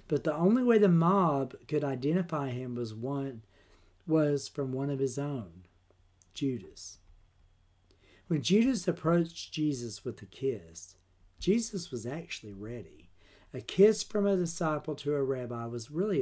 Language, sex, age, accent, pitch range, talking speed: English, male, 50-69, American, 100-160 Hz, 145 wpm